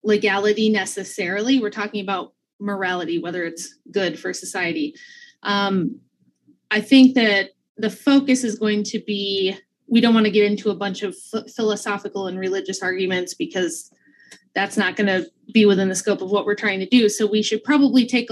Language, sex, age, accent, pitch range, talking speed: English, female, 20-39, American, 195-235 Hz, 175 wpm